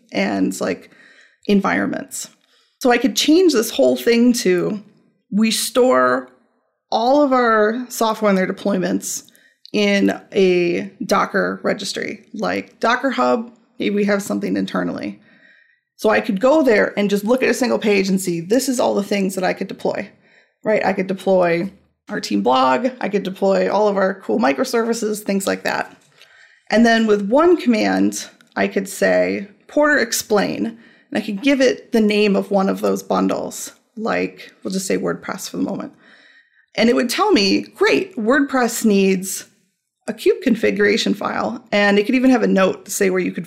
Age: 30-49